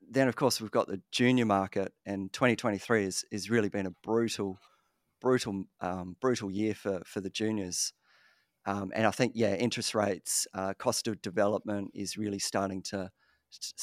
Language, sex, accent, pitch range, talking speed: English, male, Australian, 100-115 Hz, 180 wpm